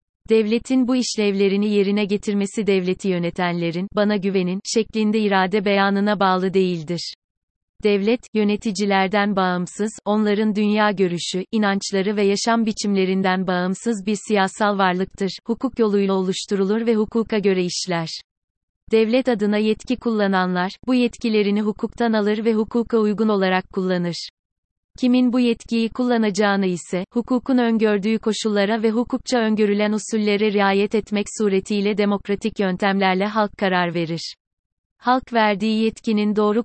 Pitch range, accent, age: 190-220 Hz, native, 30-49